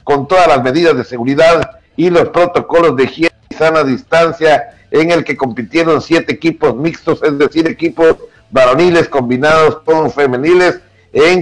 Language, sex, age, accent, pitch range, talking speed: Spanish, male, 60-79, Mexican, 135-175 Hz, 150 wpm